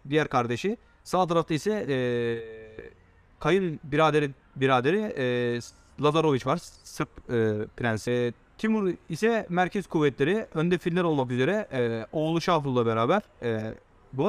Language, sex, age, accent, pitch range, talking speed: Turkish, male, 40-59, native, 125-195 Hz, 125 wpm